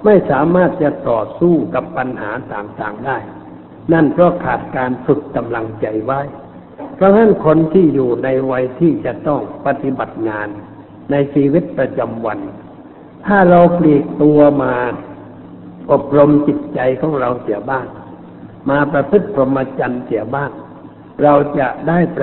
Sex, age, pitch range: male, 60-79, 125-160 Hz